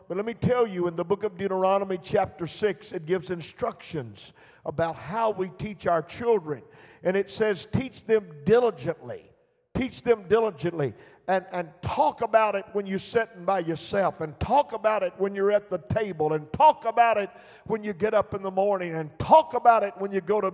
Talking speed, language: 200 wpm, English